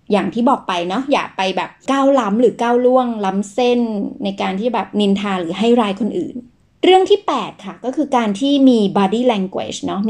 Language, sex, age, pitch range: Thai, female, 30-49, 195-250 Hz